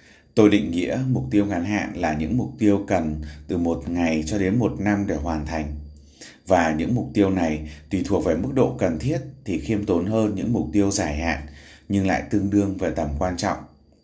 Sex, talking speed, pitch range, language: male, 220 wpm, 75-105 Hz, Vietnamese